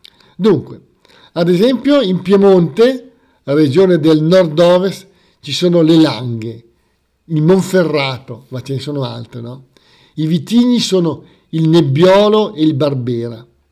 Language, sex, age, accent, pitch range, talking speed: Italian, male, 50-69, native, 135-190 Hz, 125 wpm